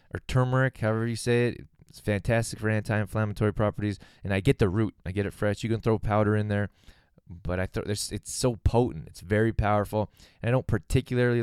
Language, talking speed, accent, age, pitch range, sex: English, 200 wpm, American, 20-39, 90-115 Hz, male